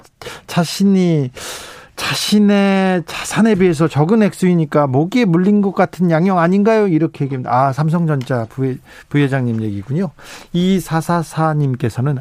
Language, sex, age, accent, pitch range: Korean, male, 40-59, native, 140-175 Hz